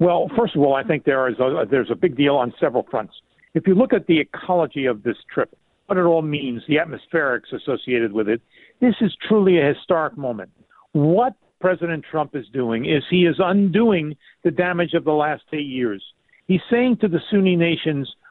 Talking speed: 195 wpm